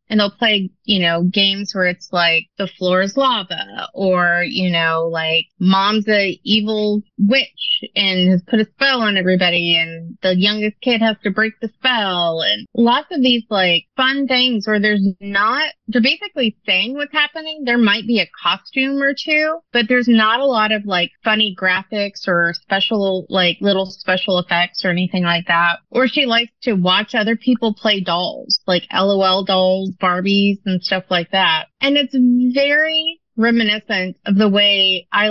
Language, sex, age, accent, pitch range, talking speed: English, female, 30-49, American, 185-240 Hz, 175 wpm